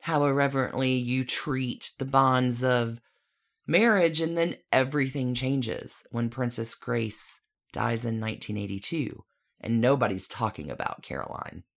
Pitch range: 120-180 Hz